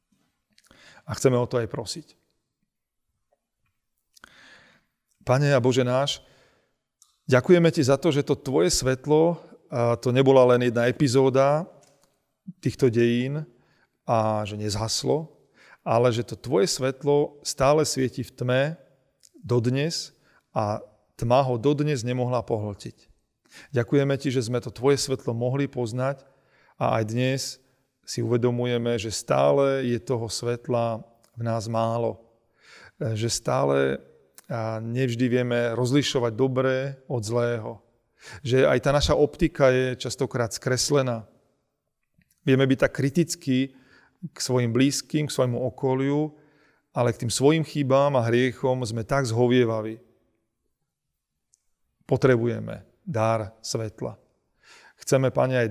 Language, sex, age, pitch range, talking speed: Slovak, male, 40-59, 120-140 Hz, 115 wpm